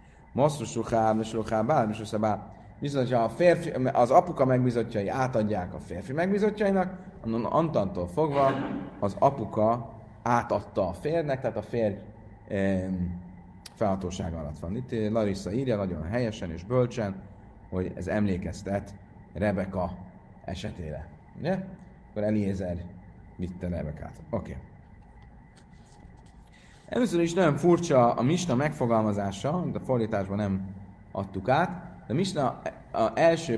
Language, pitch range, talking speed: Hungarian, 100-140 Hz, 125 wpm